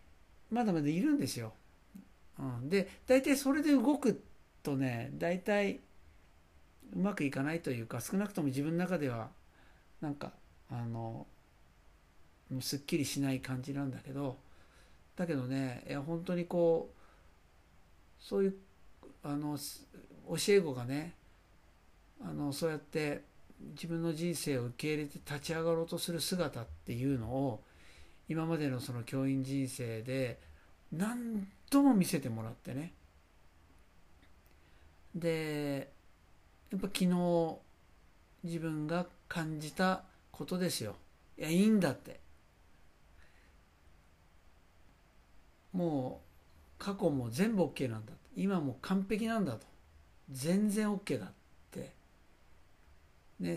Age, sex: 60-79, male